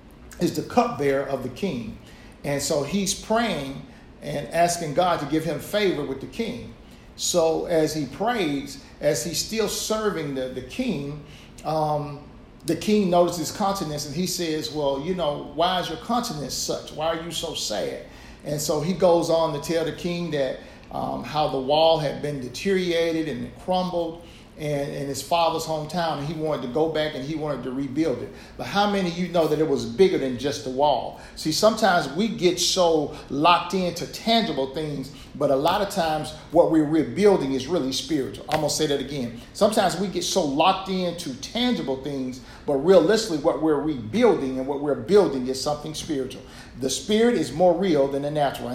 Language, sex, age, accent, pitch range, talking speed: English, male, 50-69, American, 140-175 Hz, 195 wpm